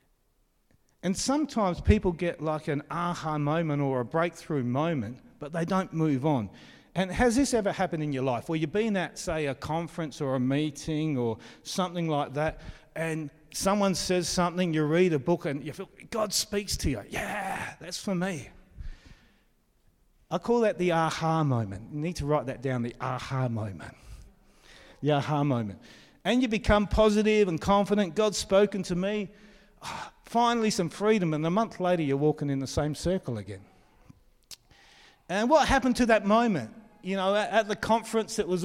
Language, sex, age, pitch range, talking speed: English, male, 40-59, 140-195 Hz, 175 wpm